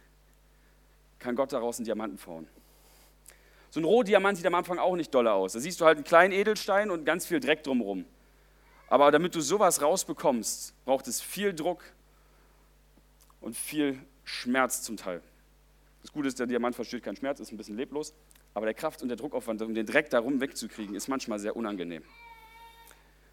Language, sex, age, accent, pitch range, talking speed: German, male, 40-59, German, 135-200 Hz, 175 wpm